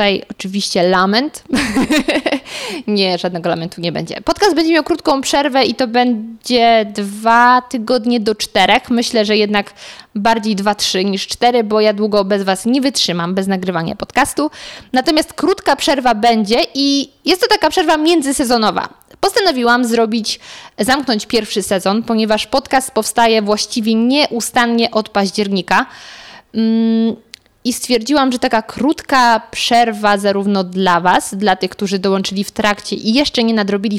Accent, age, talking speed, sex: native, 20-39, 140 wpm, female